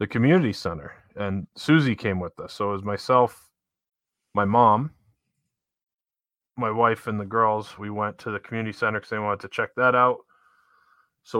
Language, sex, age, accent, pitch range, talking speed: English, male, 30-49, American, 100-125 Hz, 175 wpm